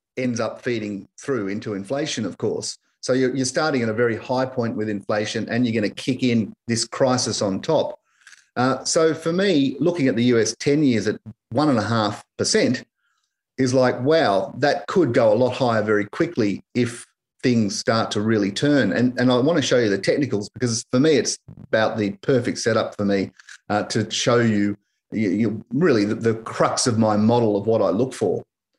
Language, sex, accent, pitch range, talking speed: English, male, Australian, 110-130 Hz, 205 wpm